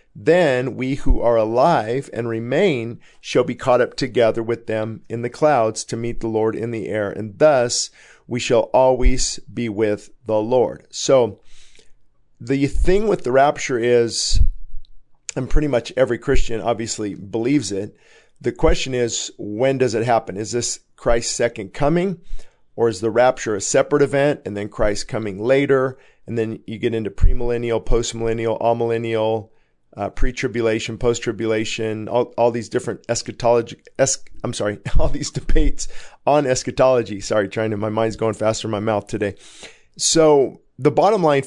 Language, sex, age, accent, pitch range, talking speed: English, male, 50-69, American, 110-130 Hz, 160 wpm